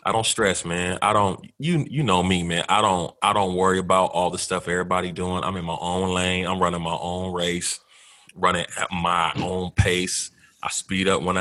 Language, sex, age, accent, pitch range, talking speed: English, male, 30-49, American, 90-110 Hz, 215 wpm